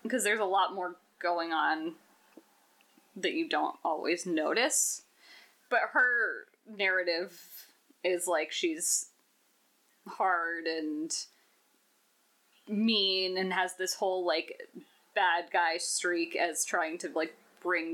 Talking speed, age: 115 wpm, 20-39